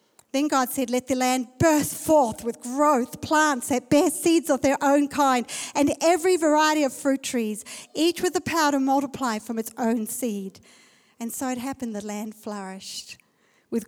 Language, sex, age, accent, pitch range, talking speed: English, female, 50-69, Australian, 240-315 Hz, 180 wpm